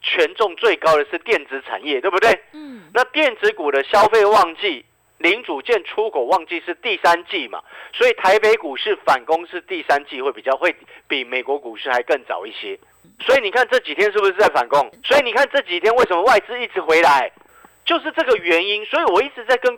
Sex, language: male, Chinese